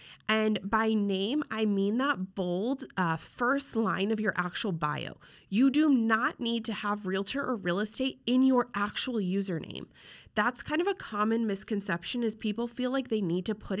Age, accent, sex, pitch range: 30-49, American, female, 185-245 Hz